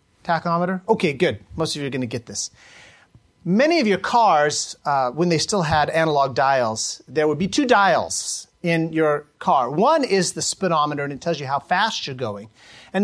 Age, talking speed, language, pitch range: 30-49, 200 wpm, English, 150-200 Hz